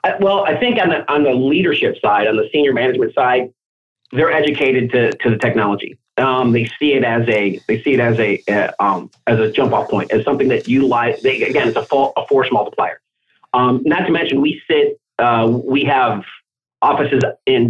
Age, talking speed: 30-49, 205 wpm